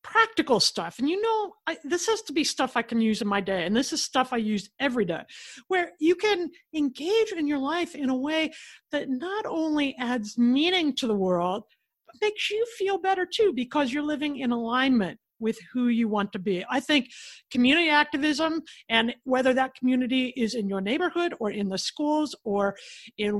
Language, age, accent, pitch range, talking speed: English, 50-69, American, 225-315 Hz, 195 wpm